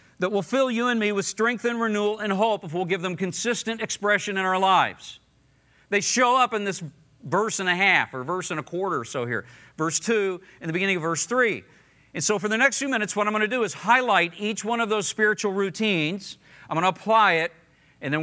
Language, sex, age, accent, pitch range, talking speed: English, male, 50-69, American, 155-205 Hz, 240 wpm